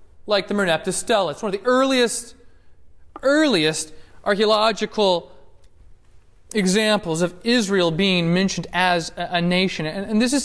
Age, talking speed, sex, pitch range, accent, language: 30-49, 130 wpm, male, 140-210 Hz, American, English